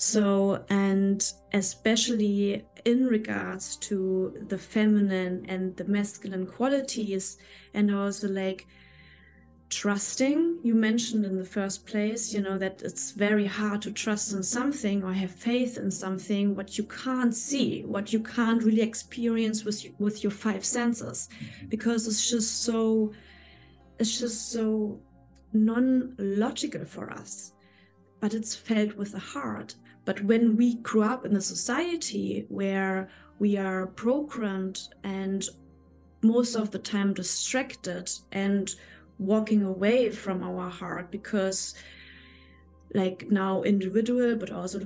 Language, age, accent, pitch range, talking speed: English, 30-49, German, 190-225 Hz, 130 wpm